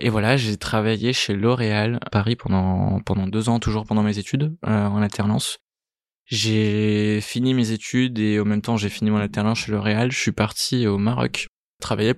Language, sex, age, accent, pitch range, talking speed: French, male, 20-39, French, 105-115 Hz, 190 wpm